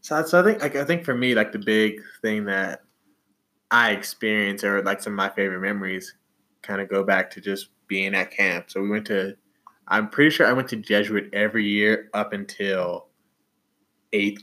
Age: 20-39